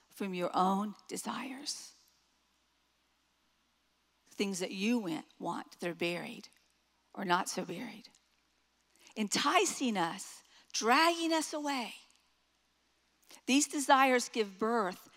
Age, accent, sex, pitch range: 50-69, American, female, 195-255 Hz